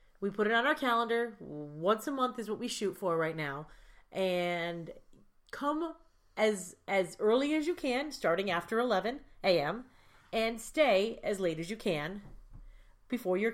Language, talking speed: English, 165 wpm